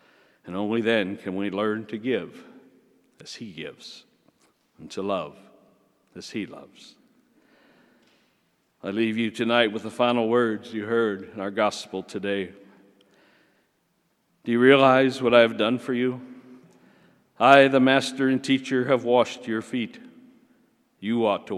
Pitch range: 105-125 Hz